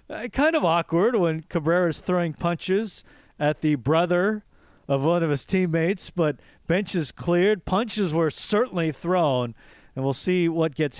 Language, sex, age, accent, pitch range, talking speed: English, male, 40-59, American, 135-175 Hz, 160 wpm